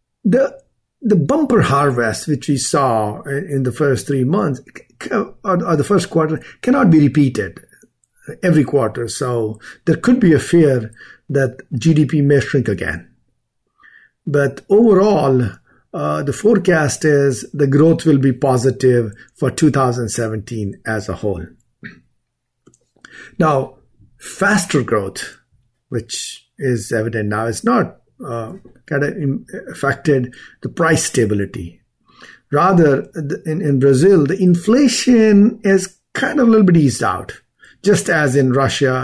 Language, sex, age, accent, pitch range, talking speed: English, male, 50-69, Indian, 125-165 Hz, 130 wpm